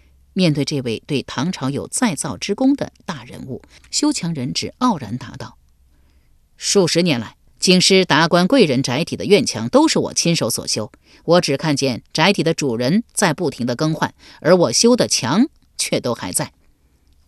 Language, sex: Chinese, female